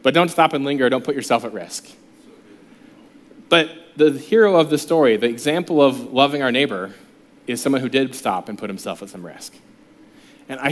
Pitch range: 130-170 Hz